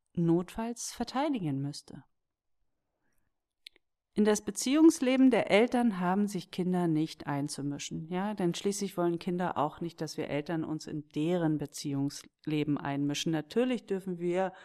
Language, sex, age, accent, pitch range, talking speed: German, female, 40-59, German, 160-220 Hz, 125 wpm